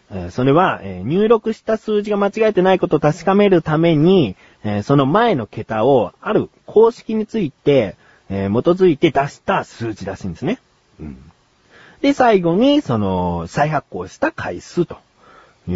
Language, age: Japanese, 40-59